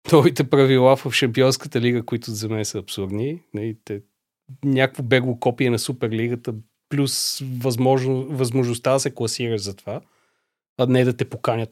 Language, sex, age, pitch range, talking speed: Bulgarian, male, 30-49, 120-150 Hz, 150 wpm